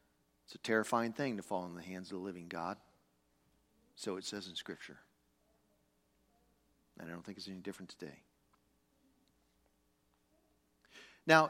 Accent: American